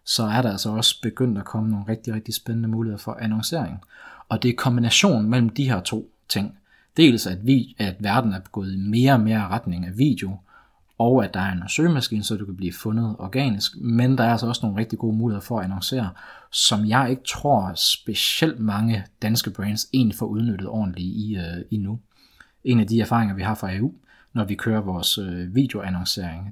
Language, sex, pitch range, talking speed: Danish, male, 100-120 Hz, 205 wpm